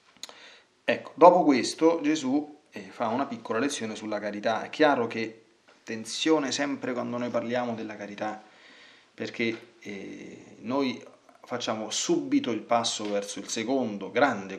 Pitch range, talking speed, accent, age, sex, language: 105-140 Hz, 125 wpm, native, 30-49, male, Italian